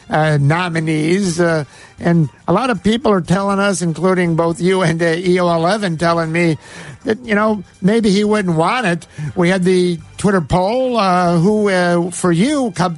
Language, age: English, 50-69